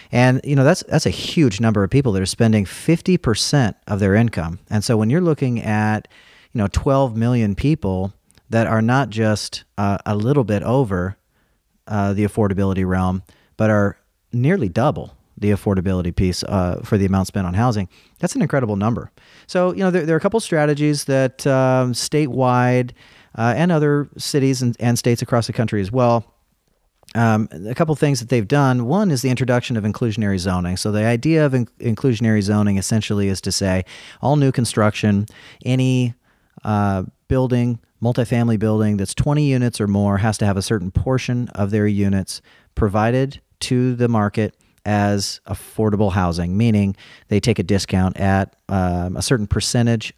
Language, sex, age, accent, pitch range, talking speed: English, male, 40-59, American, 100-130 Hz, 175 wpm